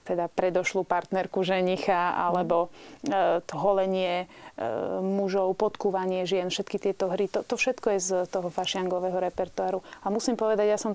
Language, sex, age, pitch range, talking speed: Slovak, female, 30-49, 185-200 Hz, 140 wpm